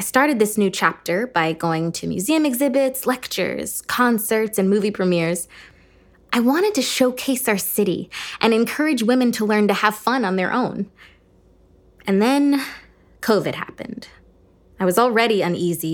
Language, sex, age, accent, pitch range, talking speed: English, female, 20-39, American, 170-220 Hz, 150 wpm